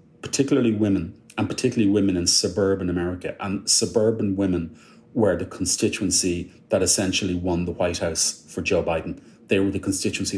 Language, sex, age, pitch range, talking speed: English, male, 30-49, 90-110 Hz, 155 wpm